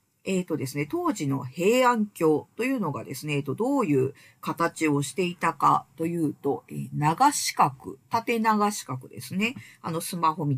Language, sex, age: Japanese, female, 50-69